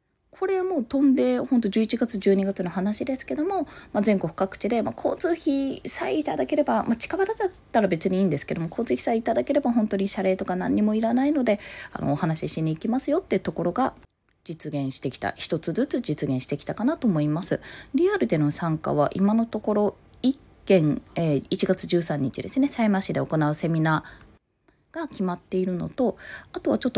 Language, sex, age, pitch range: Japanese, female, 20-39, 165-265 Hz